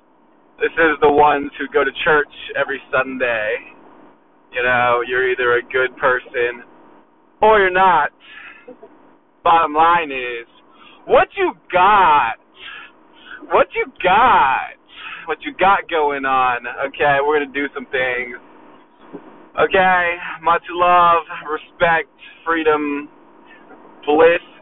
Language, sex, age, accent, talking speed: English, male, 20-39, American, 115 wpm